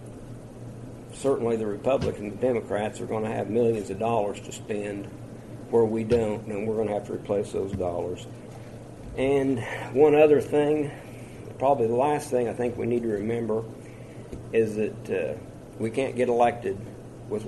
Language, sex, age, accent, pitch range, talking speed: English, male, 50-69, American, 110-125 Hz, 165 wpm